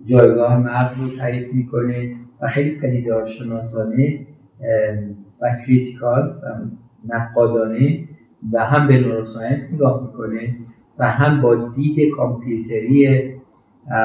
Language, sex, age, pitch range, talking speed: Persian, male, 50-69, 115-135 Hz, 100 wpm